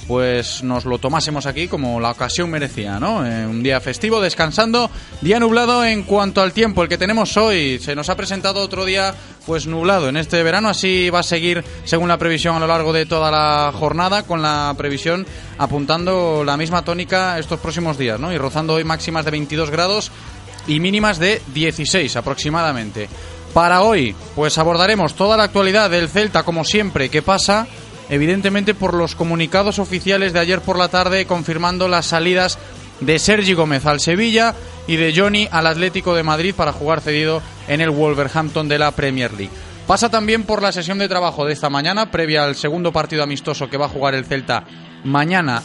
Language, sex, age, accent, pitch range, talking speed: Spanish, male, 20-39, Spanish, 140-185 Hz, 190 wpm